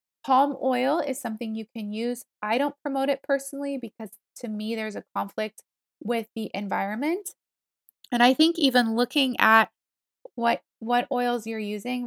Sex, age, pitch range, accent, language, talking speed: female, 20-39, 220-275 Hz, American, English, 160 wpm